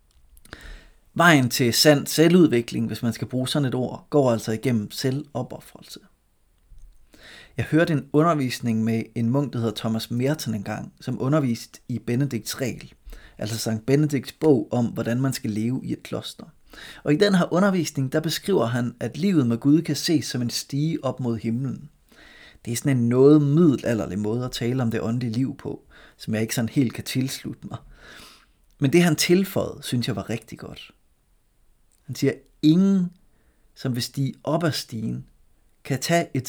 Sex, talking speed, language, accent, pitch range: male, 180 wpm, Danish, native, 115-150 Hz